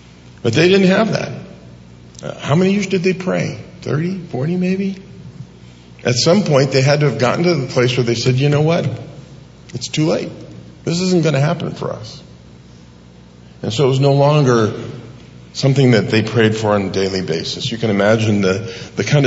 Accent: American